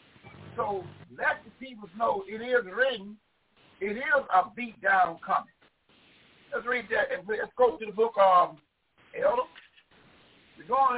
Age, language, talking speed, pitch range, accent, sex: 60-79, English, 150 wpm, 205-285 Hz, American, male